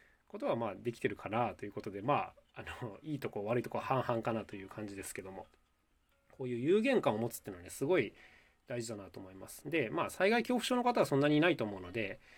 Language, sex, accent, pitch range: Japanese, male, native, 110-155 Hz